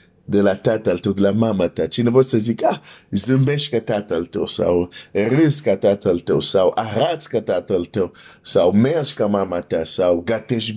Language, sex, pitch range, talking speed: Romanian, male, 115-145 Hz, 190 wpm